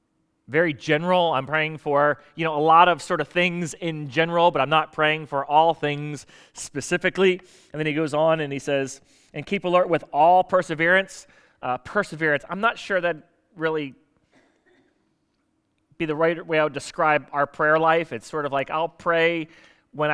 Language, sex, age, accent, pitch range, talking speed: English, male, 30-49, American, 145-185 Hz, 180 wpm